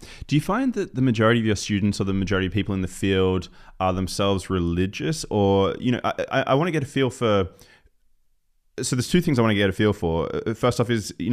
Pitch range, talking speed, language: 95-115 Hz, 245 wpm, English